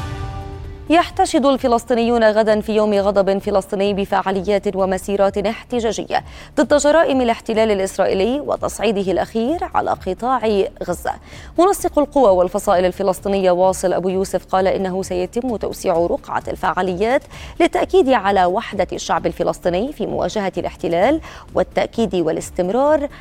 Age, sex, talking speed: 20-39, female, 110 wpm